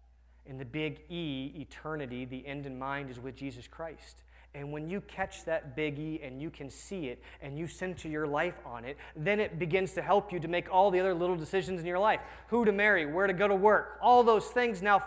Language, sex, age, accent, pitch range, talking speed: English, male, 30-49, American, 125-195 Hz, 240 wpm